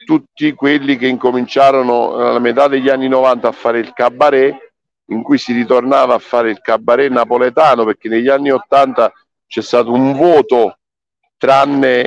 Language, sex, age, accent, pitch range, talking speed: Italian, male, 50-69, native, 120-145 Hz, 155 wpm